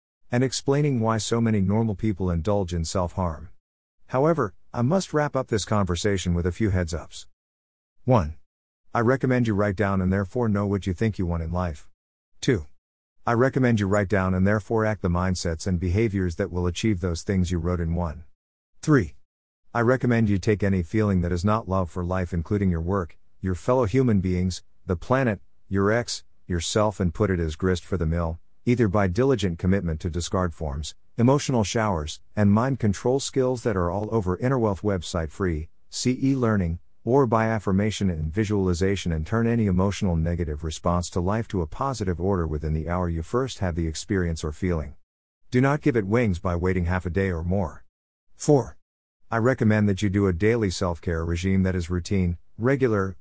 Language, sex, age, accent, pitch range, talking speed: English, male, 50-69, American, 85-110 Hz, 190 wpm